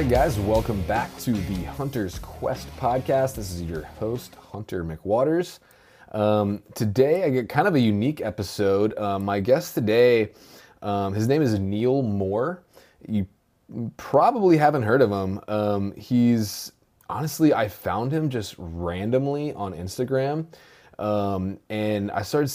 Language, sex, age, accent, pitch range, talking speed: English, male, 20-39, American, 95-115 Hz, 140 wpm